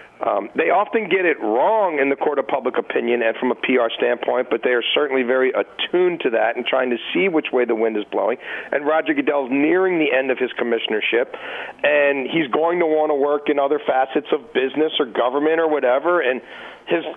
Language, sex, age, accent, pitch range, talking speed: English, male, 40-59, American, 130-175 Hz, 215 wpm